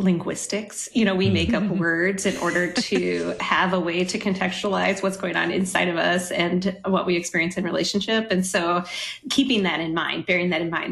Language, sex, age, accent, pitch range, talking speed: English, female, 30-49, American, 170-210 Hz, 205 wpm